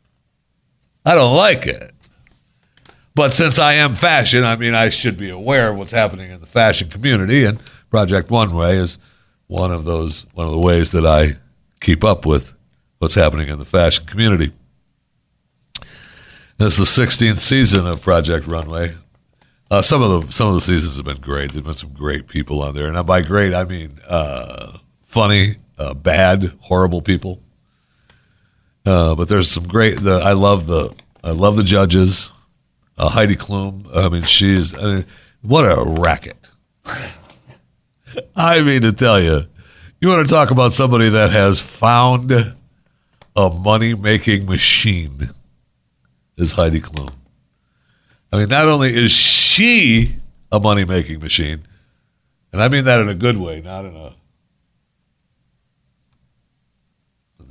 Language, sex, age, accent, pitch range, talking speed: English, male, 60-79, American, 80-110 Hz, 150 wpm